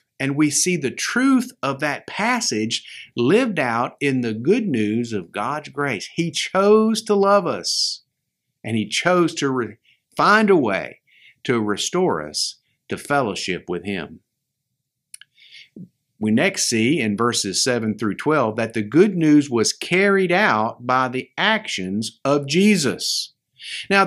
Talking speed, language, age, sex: 140 wpm, English, 50-69, male